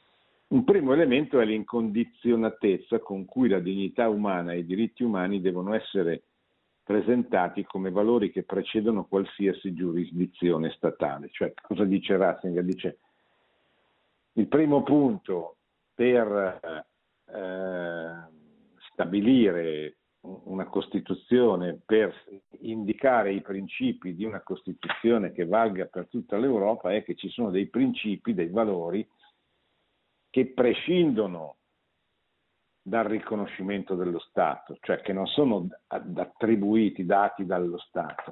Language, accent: Italian, native